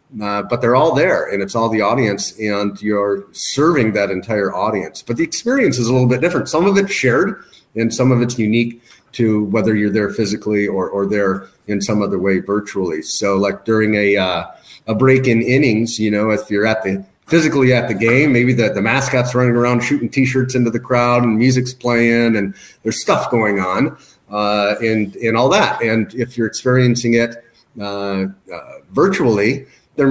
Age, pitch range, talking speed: 40-59, 105-125 Hz, 195 wpm